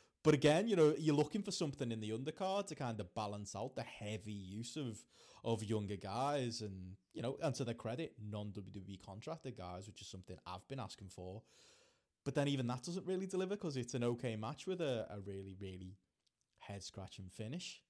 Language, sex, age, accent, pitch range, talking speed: English, male, 20-39, British, 105-130 Hz, 200 wpm